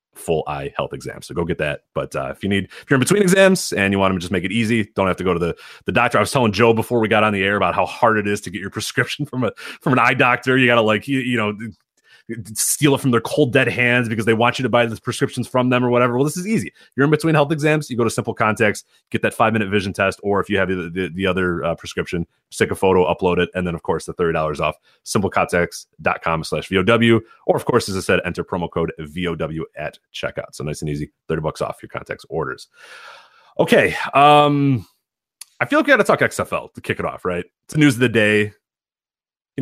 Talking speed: 265 wpm